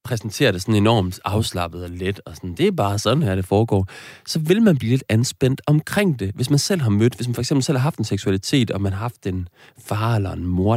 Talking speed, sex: 260 wpm, male